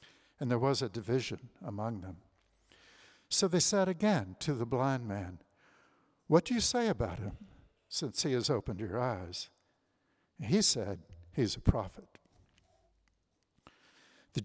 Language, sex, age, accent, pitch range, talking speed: English, male, 60-79, American, 105-145 Hz, 135 wpm